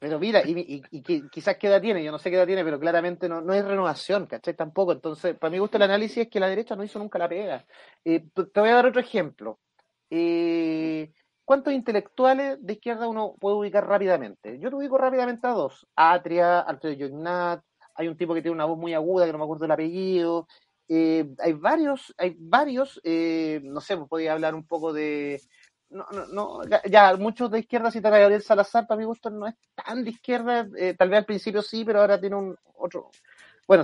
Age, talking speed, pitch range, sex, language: 30-49, 220 wpm, 160-210 Hz, male, Spanish